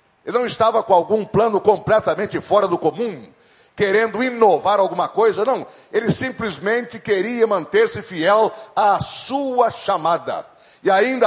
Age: 60-79